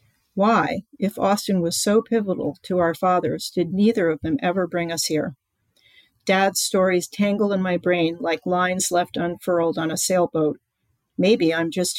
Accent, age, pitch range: American, 50-69, 170-190 Hz